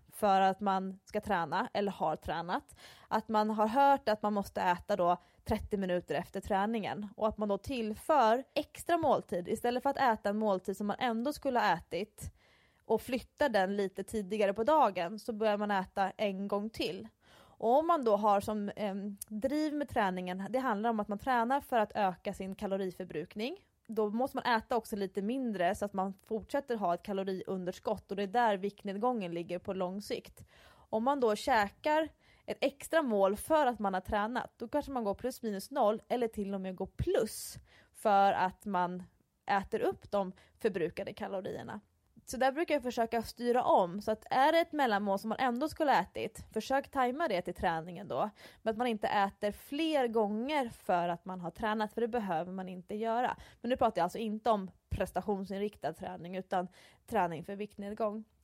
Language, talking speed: English, 190 wpm